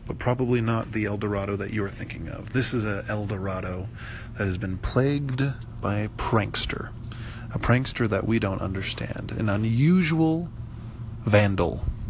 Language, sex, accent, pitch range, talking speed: English, male, American, 105-120 Hz, 155 wpm